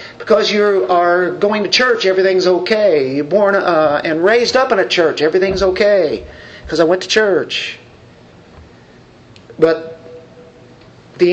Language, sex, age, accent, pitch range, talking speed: English, male, 50-69, American, 145-185 Hz, 140 wpm